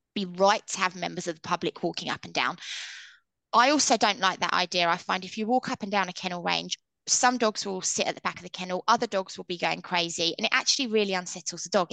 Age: 20-39